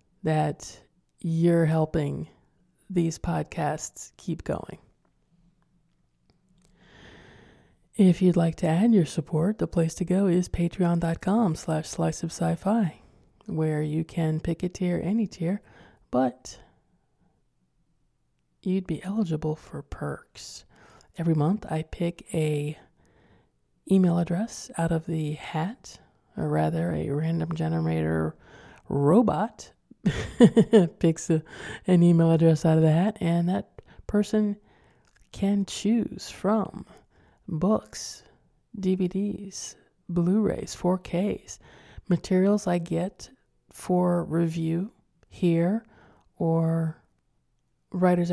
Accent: American